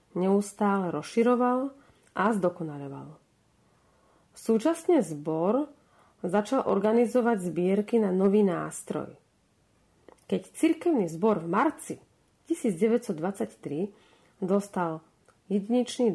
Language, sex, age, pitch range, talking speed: Slovak, female, 40-59, 180-230 Hz, 75 wpm